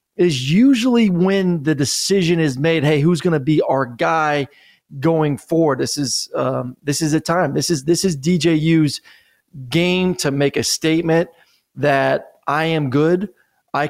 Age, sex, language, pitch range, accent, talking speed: 30-49, male, English, 145-175 Hz, American, 165 wpm